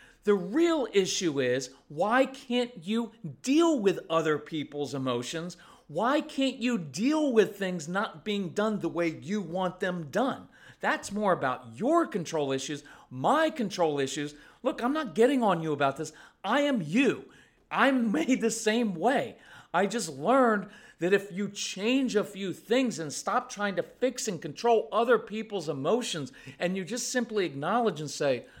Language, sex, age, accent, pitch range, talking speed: English, male, 40-59, American, 165-245 Hz, 165 wpm